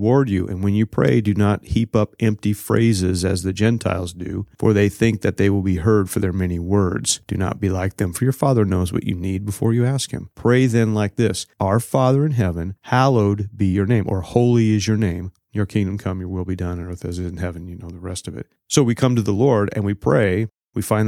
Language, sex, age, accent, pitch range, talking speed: English, male, 30-49, American, 95-110 Hz, 260 wpm